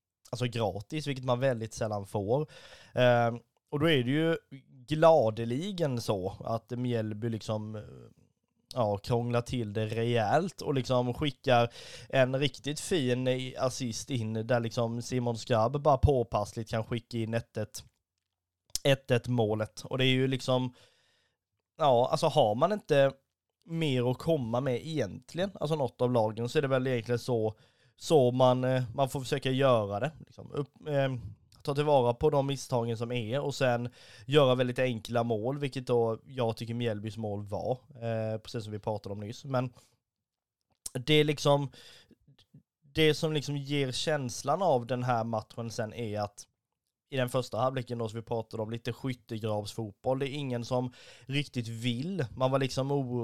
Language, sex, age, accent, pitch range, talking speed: Swedish, male, 20-39, native, 115-135 Hz, 160 wpm